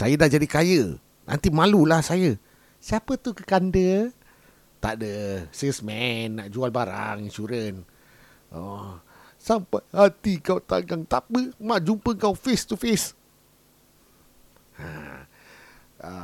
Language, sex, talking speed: Malay, male, 105 wpm